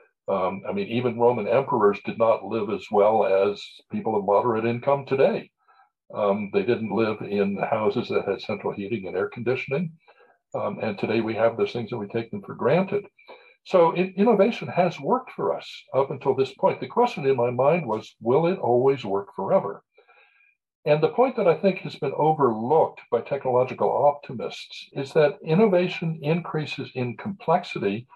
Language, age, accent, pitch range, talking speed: English, 60-79, American, 115-185 Hz, 175 wpm